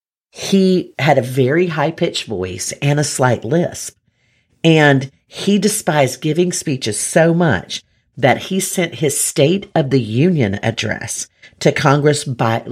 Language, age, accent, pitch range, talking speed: English, 40-59, American, 110-165 Hz, 140 wpm